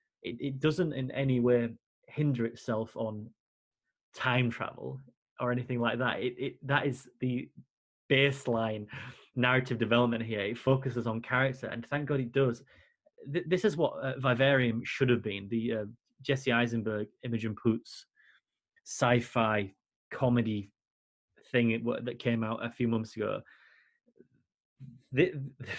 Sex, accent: male, British